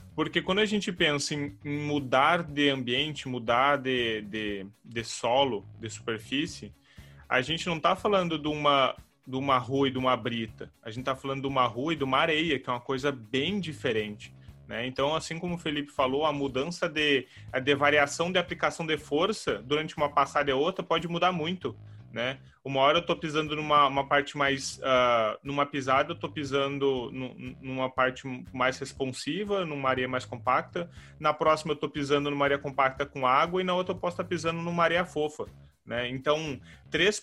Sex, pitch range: male, 130-165 Hz